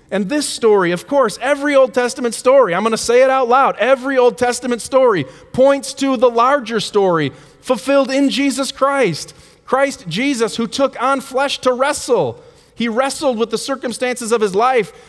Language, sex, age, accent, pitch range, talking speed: English, male, 30-49, American, 210-265 Hz, 180 wpm